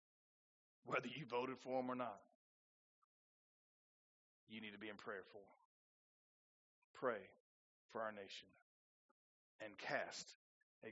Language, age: English, 40-59